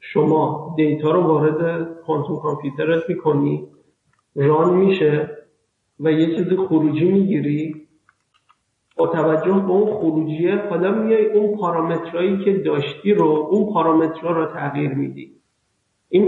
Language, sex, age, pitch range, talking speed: Persian, male, 50-69, 150-175 Hz, 120 wpm